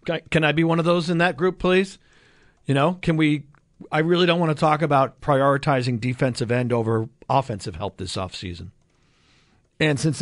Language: English